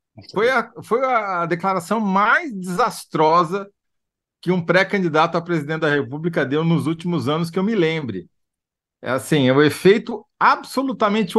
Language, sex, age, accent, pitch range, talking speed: Portuguese, male, 40-59, Brazilian, 120-170 Hz, 140 wpm